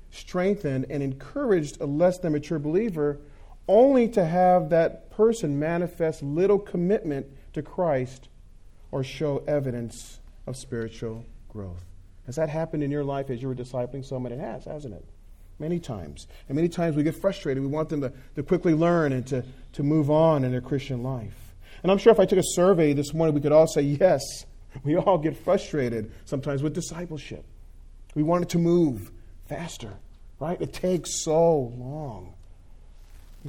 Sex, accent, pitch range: male, American, 110-155 Hz